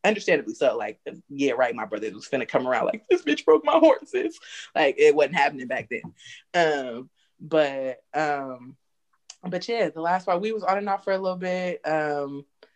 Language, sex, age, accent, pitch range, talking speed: English, female, 20-39, American, 135-180 Hz, 195 wpm